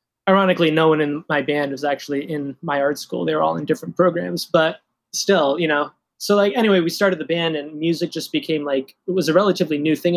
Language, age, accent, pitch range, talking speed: English, 20-39, American, 145-165 Hz, 235 wpm